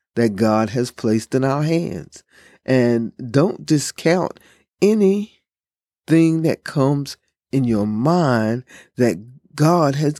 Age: 50-69